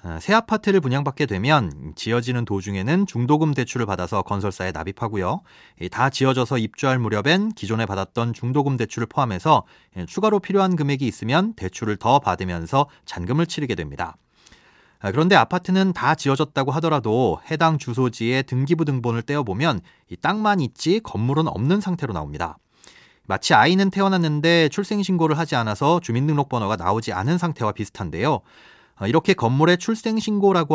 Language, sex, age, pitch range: Korean, male, 30-49, 115-170 Hz